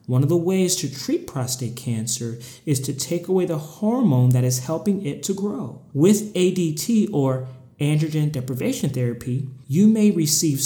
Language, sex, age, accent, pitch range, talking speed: English, male, 30-49, American, 130-160 Hz, 165 wpm